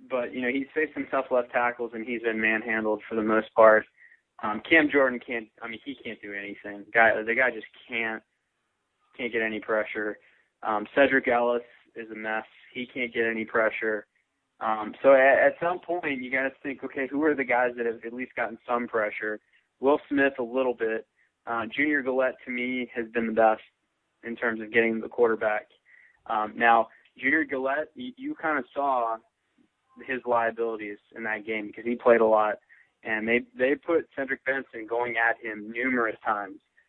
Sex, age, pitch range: male, 20-39, 110-130 Hz